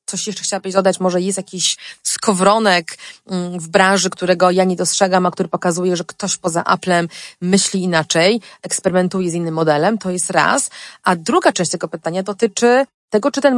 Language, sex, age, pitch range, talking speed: Polish, female, 30-49, 175-215 Hz, 170 wpm